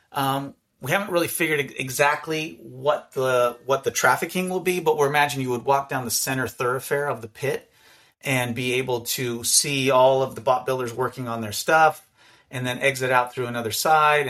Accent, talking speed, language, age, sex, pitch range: American, 195 wpm, English, 30-49, male, 115-135 Hz